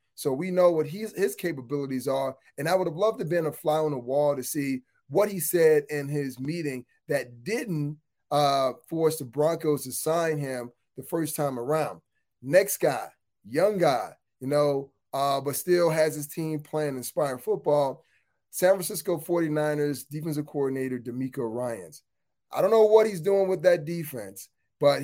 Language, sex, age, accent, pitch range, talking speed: English, male, 30-49, American, 135-165 Hz, 175 wpm